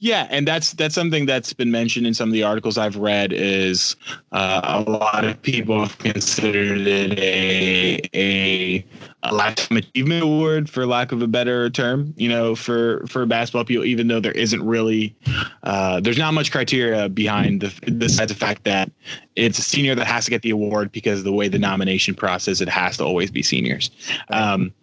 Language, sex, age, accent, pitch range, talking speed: English, male, 20-39, American, 105-130 Hz, 190 wpm